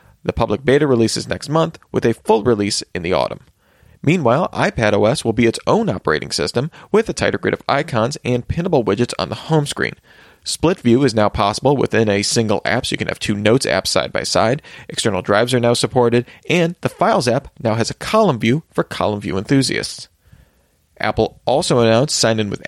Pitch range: 110-150 Hz